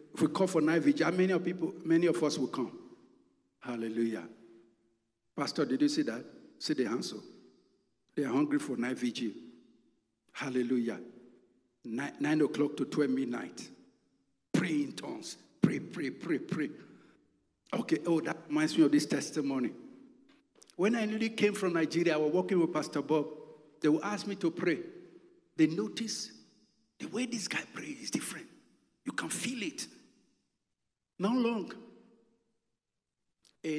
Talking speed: 150 wpm